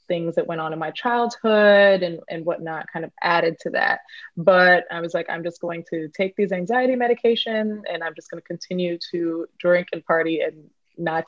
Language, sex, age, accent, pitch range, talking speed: English, female, 20-39, American, 160-185 Hz, 205 wpm